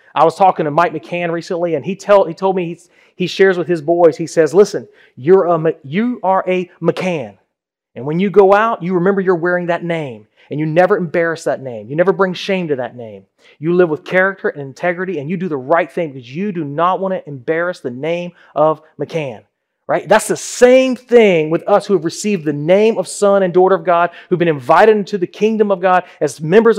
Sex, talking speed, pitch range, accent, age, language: male, 230 wpm, 165-205 Hz, American, 30-49, English